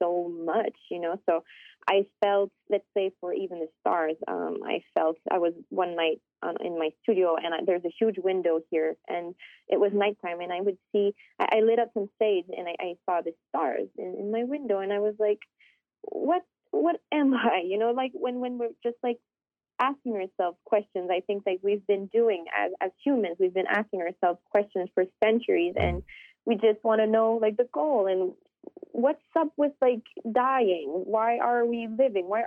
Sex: female